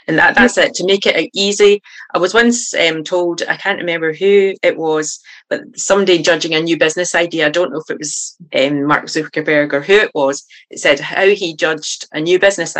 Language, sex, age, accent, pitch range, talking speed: English, female, 30-49, British, 150-175 Hz, 220 wpm